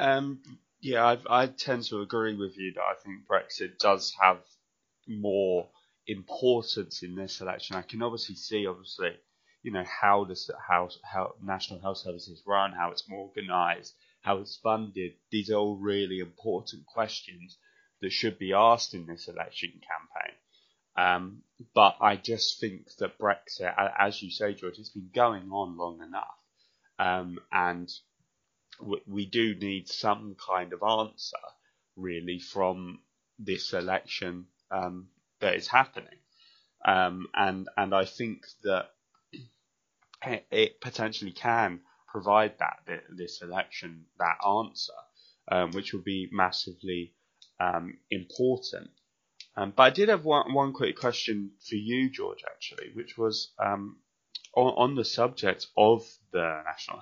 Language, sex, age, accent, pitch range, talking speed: English, male, 20-39, British, 95-120 Hz, 140 wpm